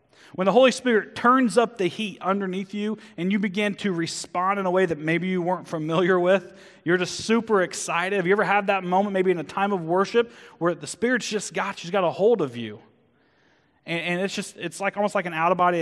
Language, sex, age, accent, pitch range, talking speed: English, male, 30-49, American, 160-200 Hz, 240 wpm